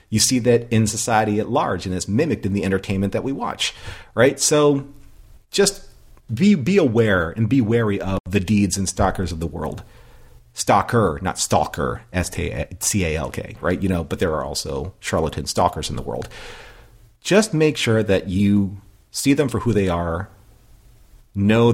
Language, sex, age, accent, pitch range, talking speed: English, male, 40-59, American, 95-110 Hz, 170 wpm